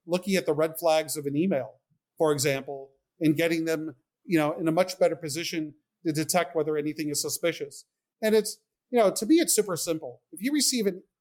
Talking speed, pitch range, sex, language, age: 210 wpm, 150-175 Hz, male, English, 40-59